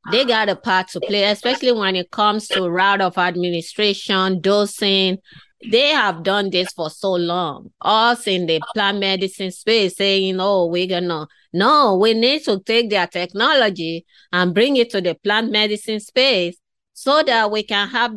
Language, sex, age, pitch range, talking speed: English, female, 30-49, 175-210 Hz, 175 wpm